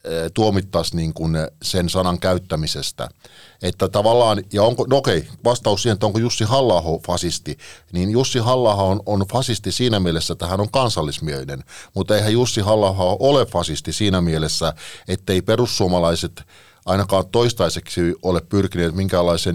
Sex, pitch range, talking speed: male, 85-105 Hz, 140 wpm